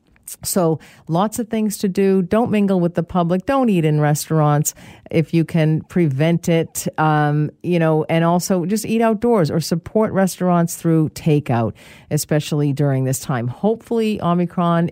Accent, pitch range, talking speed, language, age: American, 150-195 Hz, 155 wpm, English, 50-69